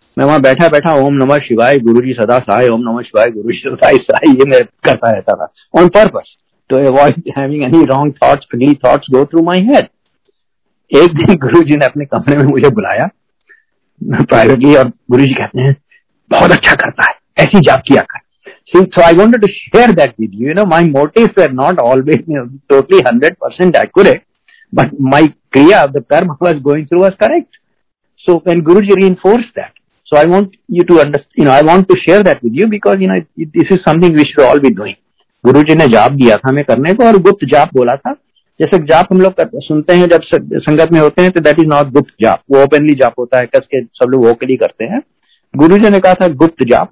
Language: Hindi